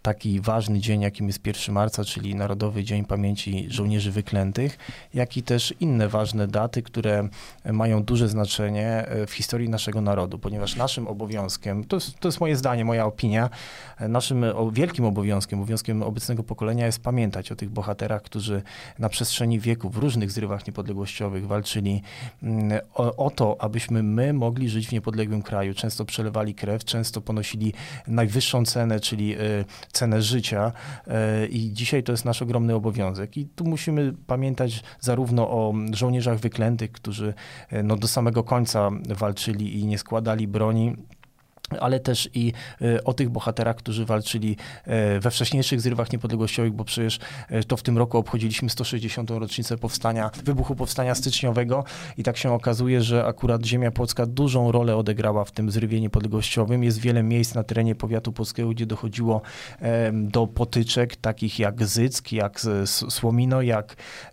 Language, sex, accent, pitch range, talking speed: Polish, male, native, 110-125 Hz, 145 wpm